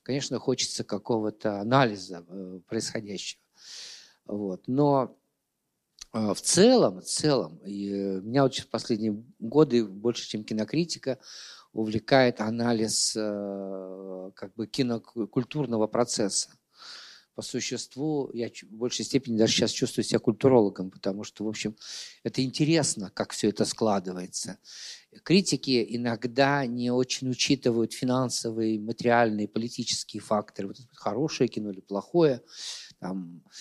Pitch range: 105-130 Hz